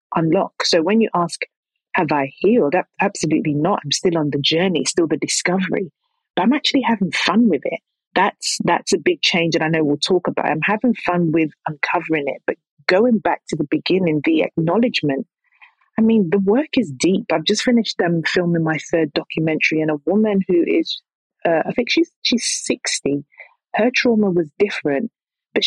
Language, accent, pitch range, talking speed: English, British, 160-230 Hz, 185 wpm